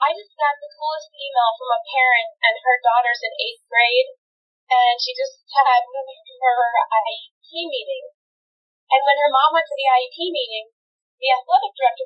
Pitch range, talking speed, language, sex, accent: 230-300 Hz, 175 wpm, English, female, American